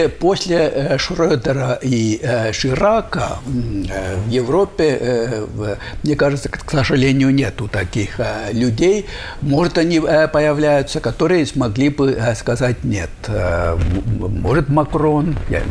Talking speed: 90 wpm